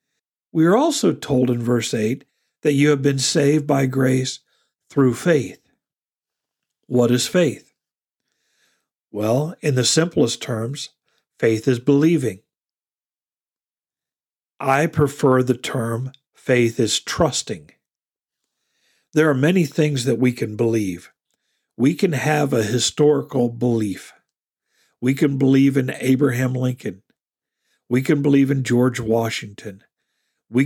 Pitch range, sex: 120-150 Hz, male